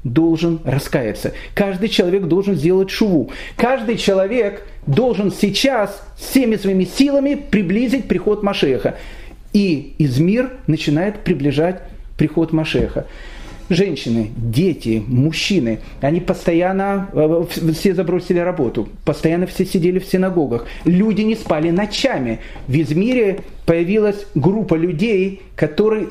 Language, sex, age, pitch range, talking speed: Russian, male, 40-59, 155-200 Hz, 110 wpm